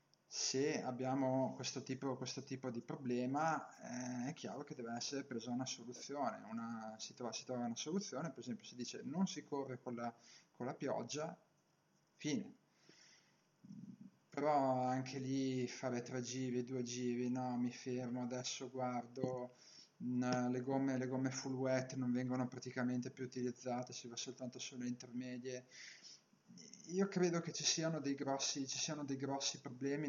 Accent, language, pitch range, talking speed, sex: native, Italian, 125-135 Hz, 145 wpm, male